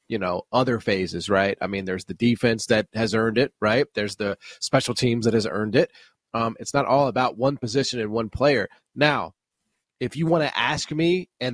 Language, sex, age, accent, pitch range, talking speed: English, male, 30-49, American, 115-145 Hz, 215 wpm